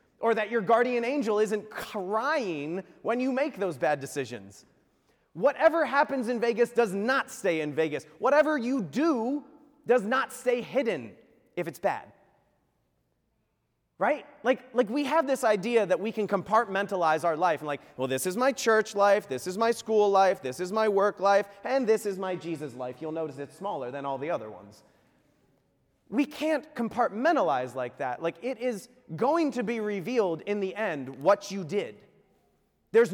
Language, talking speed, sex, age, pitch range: English, 175 wpm, male, 30-49, 165-240 Hz